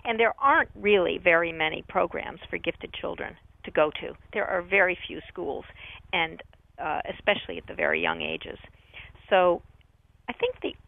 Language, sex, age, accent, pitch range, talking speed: English, female, 50-69, American, 170-240 Hz, 165 wpm